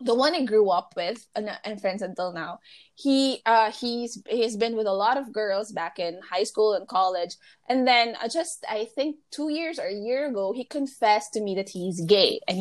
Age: 20-39